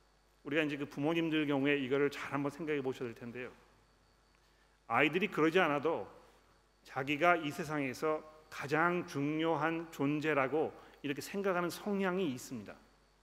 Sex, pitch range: male, 140-170 Hz